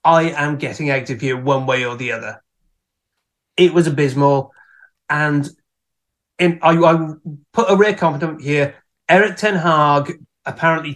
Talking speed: 140 wpm